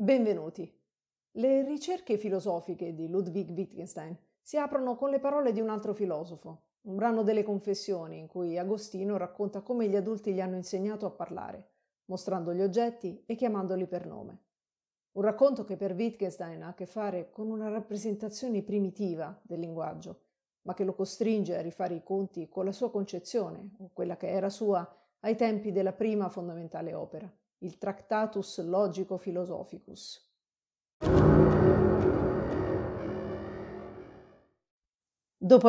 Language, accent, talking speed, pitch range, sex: Italian, native, 140 wpm, 180-210 Hz, female